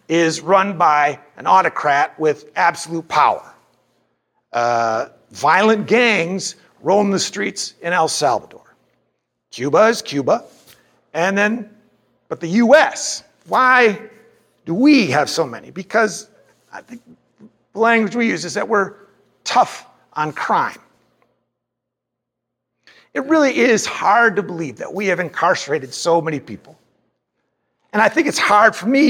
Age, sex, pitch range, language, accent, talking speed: 50-69, male, 160-230 Hz, English, American, 130 wpm